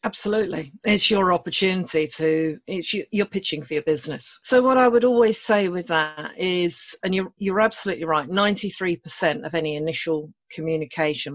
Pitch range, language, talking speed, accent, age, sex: 155-190 Hz, English, 175 wpm, British, 40-59, female